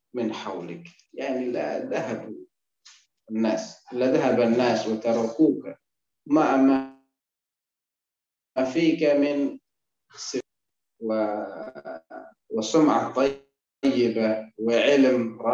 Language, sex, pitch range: Indonesian, male, 110-145 Hz